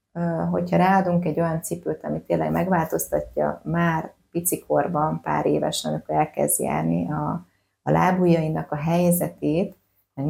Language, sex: Hungarian, female